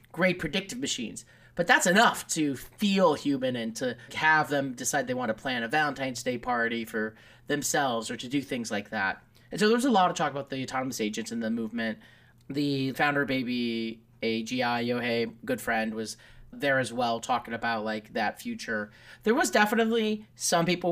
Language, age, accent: English, 30-49, American